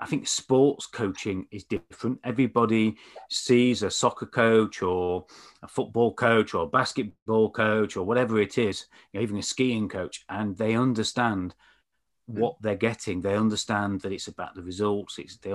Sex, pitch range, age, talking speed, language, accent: male, 95-115 Hz, 30-49, 160 wpm, English, British